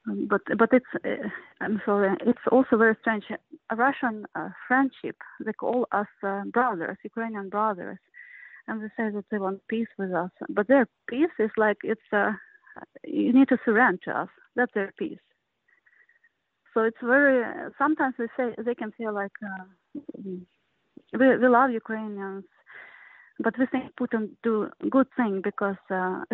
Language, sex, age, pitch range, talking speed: Swedish, female, 30-49, 205-255 Hz, 160 wpm